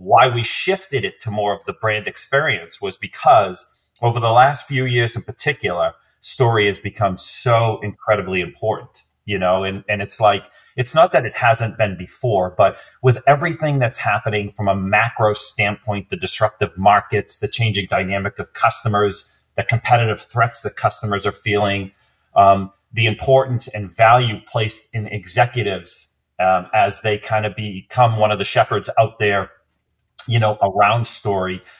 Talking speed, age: 160 wpm, 30-49